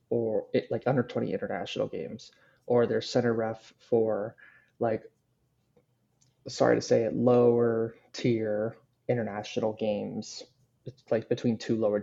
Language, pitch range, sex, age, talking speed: English, 115-135 Hz, male, 20-39, 120 wpm